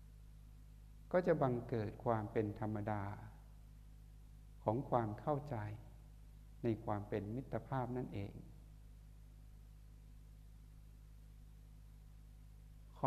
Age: 60-79